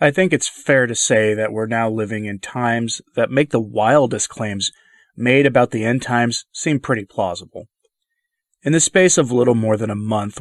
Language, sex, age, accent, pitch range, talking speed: English, male, 30-49, American, 110-140 Hz, 195 wpm